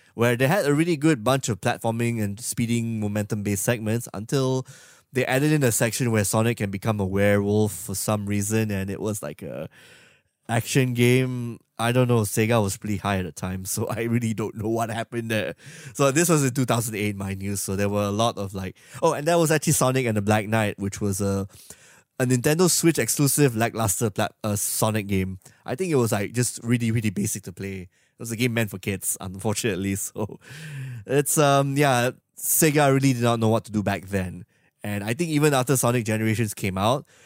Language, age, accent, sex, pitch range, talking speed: English, 20-39, Malaysian, male, 105-130 Hz, 210 wpm